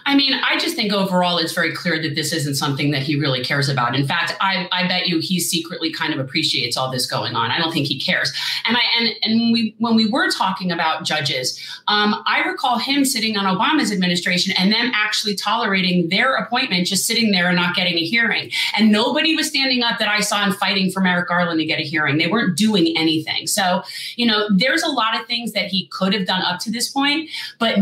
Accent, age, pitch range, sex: American, 30-49, 175-225 Hz, female